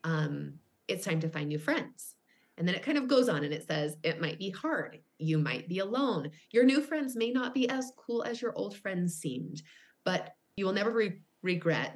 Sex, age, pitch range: female, 20-39, 150-175 Hz